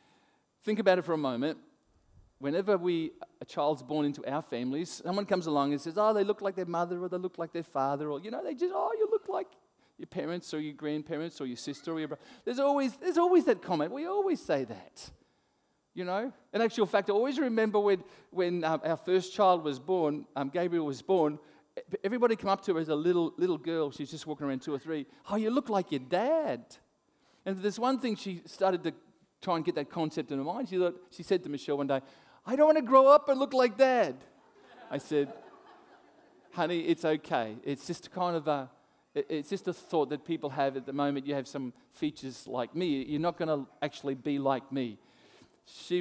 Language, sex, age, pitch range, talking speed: English, male, 40-59, 145-215 Hz, 220 wpm